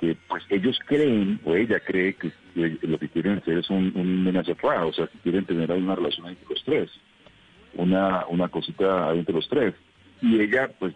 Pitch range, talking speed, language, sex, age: 90-120 Hz, 205 wpm, Spanish, male, 50-69